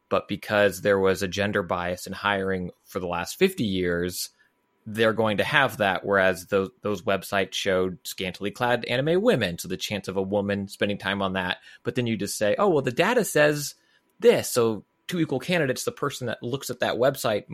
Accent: American